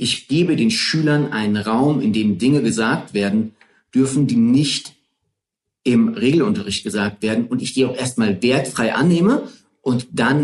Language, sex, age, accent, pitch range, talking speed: German, male, 40-59, German, 115-145 Hz, 155 wpm